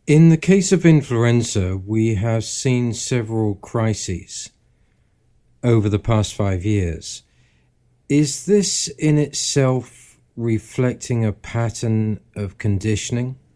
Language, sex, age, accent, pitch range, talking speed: English, male, 50-69, British, 100-120 Hz, 105 wpm